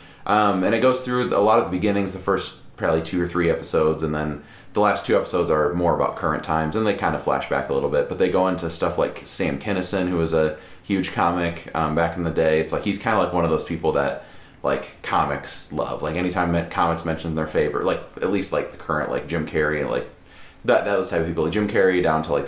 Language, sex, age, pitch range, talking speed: English, male, 20-39, 75-90 Hz, 260 wpm